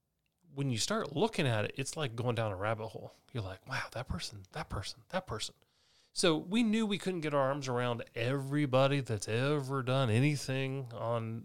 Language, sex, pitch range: English, male, 110-145 Hz